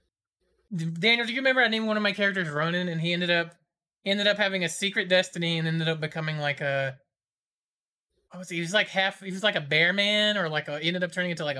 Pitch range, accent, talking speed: 165-205 Hz, American, 250 wpm